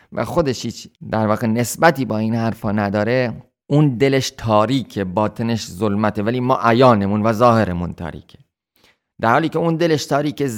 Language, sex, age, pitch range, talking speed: Persian, male, 30-49, 100-130 Hz, 145 wpm